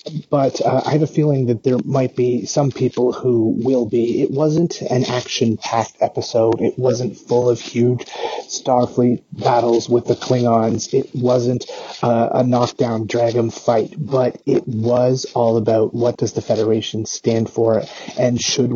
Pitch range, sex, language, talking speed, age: 115-135 Hz, male, English, 160 wpm, 30-49